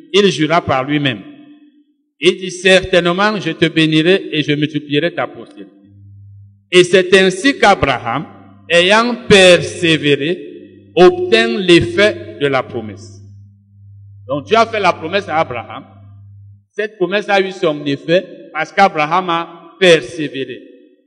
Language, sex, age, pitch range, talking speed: French, male, 60-79, 145-210 Hz, 125 wpm